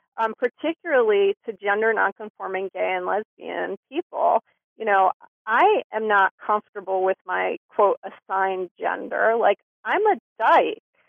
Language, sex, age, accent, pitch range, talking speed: English, female, 40-59, American, 210-270 Hz, 130 wpm